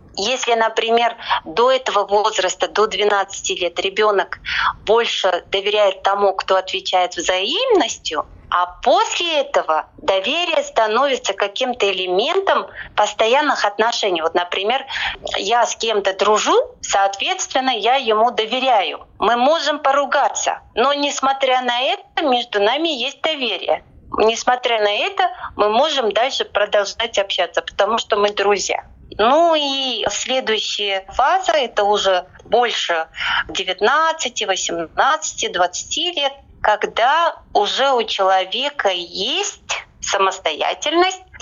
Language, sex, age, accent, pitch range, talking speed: Russian, female, 30-49, native, 200-280 Hz, 105 wpm